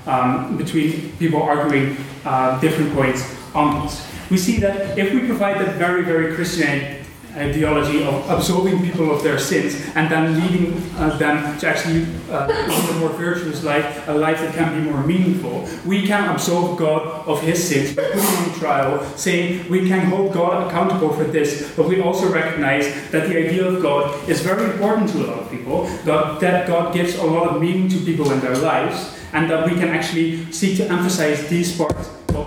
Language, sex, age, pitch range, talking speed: English, male, 20-39, 145-175 Hz, 190 wpm